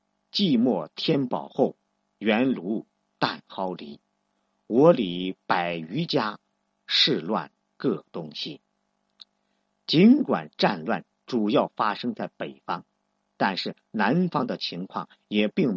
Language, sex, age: Chinese, male, 50-69